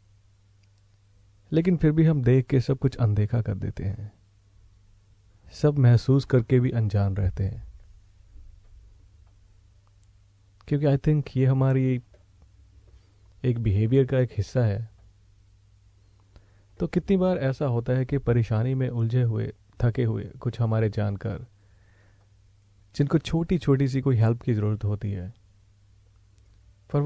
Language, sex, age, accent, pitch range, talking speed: Hindi, male, 40-59, native, 100-130 Hz, 125 wpm